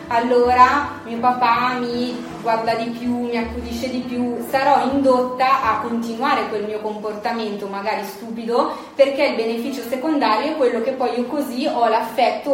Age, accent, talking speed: 20-39, native, 155 wpm